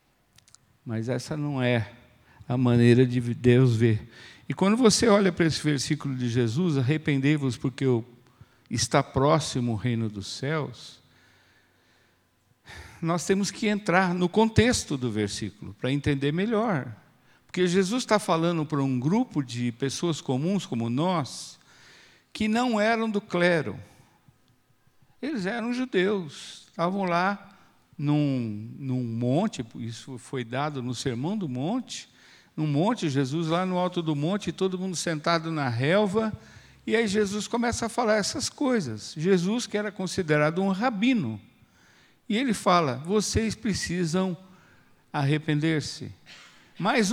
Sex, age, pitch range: male, 60-79, 125-205 Hz